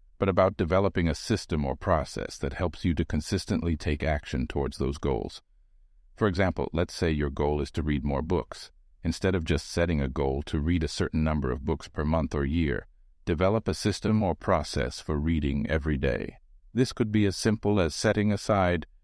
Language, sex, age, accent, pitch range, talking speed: English, male, 50-69, American, 80-100 Hz, 195 wpm